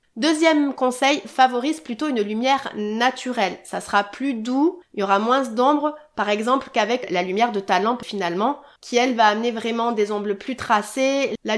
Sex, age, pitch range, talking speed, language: female, 30-49, 215-275 Hz, 180 wpm, French